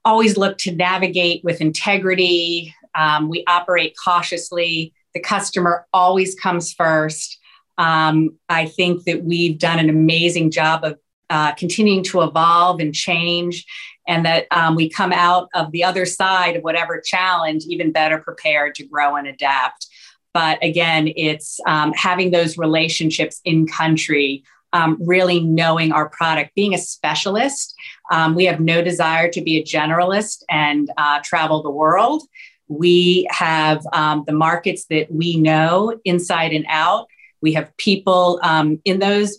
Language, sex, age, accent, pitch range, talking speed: English, female, 40-59, American, 155-180 Hz, 150 wpm